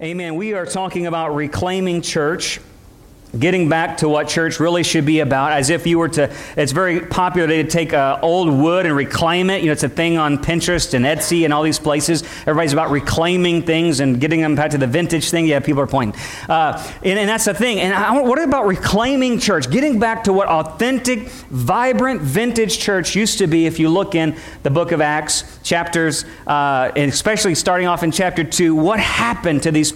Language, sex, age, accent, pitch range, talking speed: English, male, 40-59, American, 145-175 Hz, 210 wpm